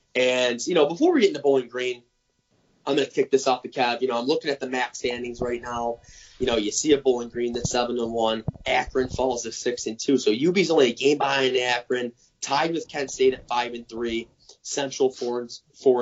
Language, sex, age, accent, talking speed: English, male, 20-39, American, 230 wpm